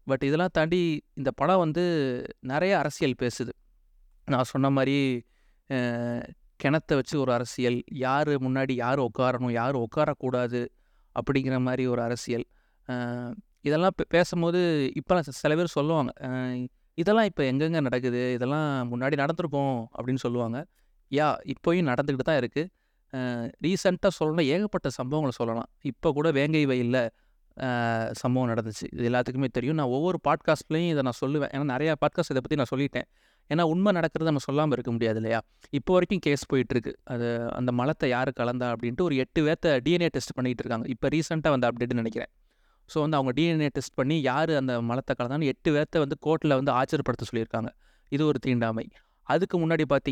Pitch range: 125-155 Hz